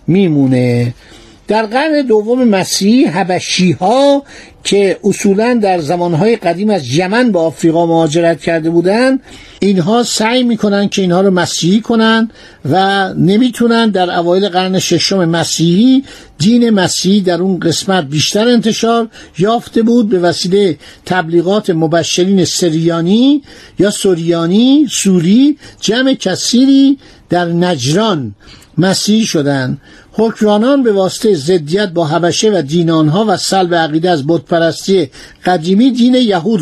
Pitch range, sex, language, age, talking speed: 170-225 Hz, male, Persian, 50-69, 120 wpm